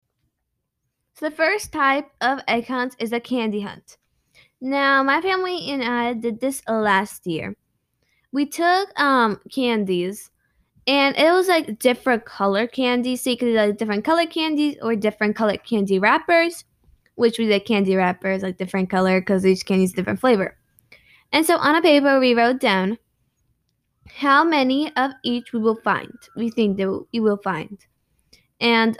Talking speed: 165 wpm